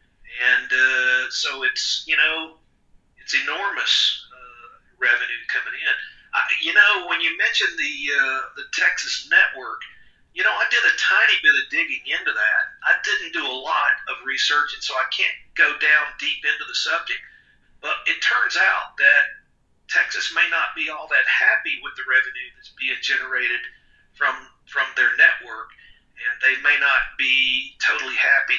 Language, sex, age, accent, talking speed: English, male, 50-69, American, 170 wpm